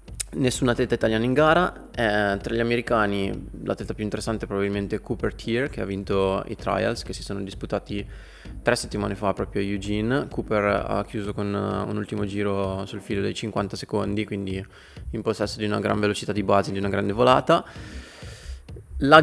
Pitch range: 100-110 Hz